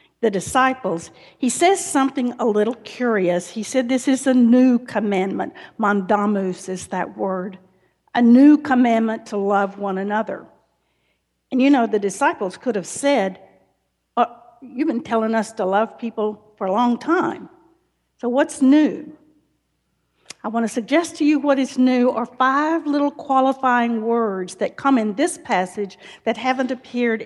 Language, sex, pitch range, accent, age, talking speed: English, female, 205-265 Hz, American, 50-69, 155 wpm